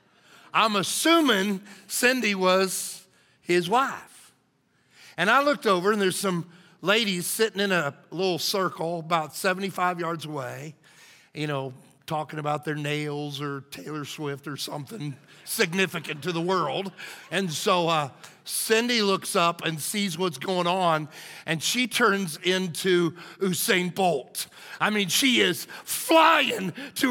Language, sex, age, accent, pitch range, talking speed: English, male, 50-69, American, 155-215 Hz, 135 wpm